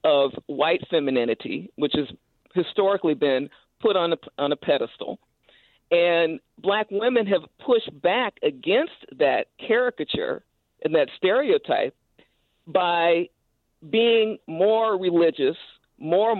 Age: 50-69